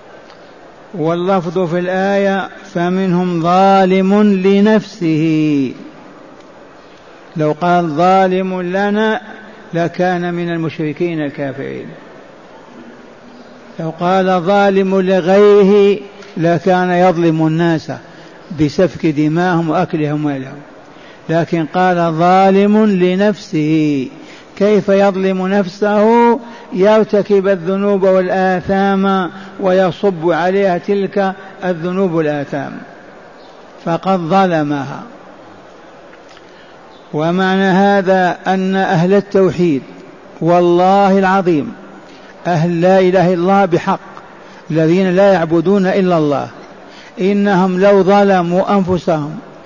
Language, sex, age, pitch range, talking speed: Arabic, male, 60-79, 170-195 Hz, 75 wpm